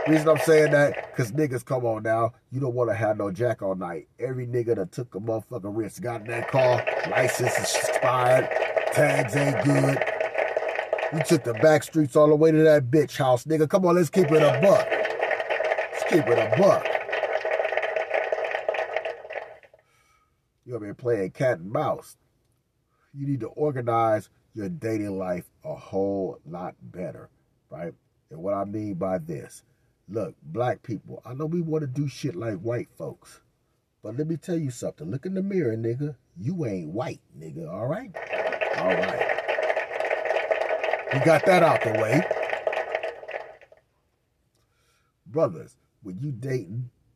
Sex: male